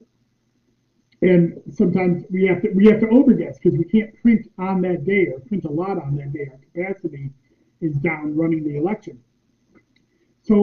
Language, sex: English, male